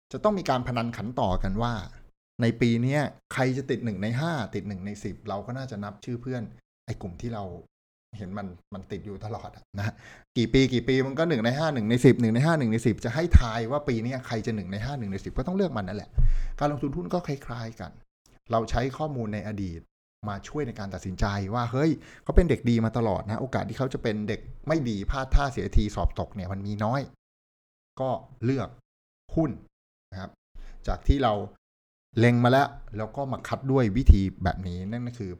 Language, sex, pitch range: Thai, male, 100-130 Hz